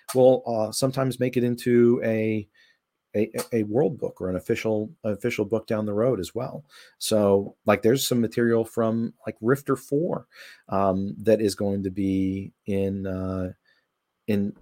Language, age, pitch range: English, 40-59, 95-120 Hz